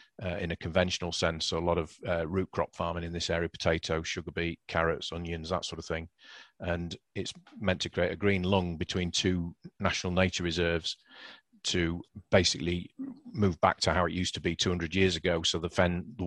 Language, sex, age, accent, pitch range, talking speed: English, male, 40-59, British, 85-90 Hz, 205 wpm